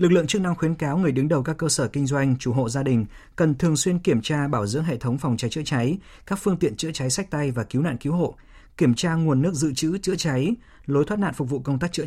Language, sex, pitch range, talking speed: Vietnamese, male, 125-160 Hz, 295 wpm